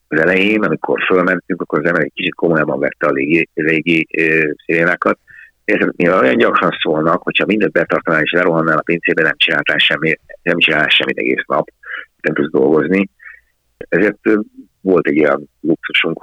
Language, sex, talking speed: Hungarian, male, 145 wpm